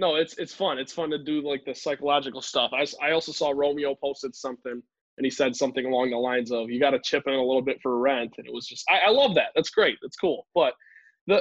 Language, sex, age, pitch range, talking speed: English, male, 20-39, 140-165 Hz, 270 wpm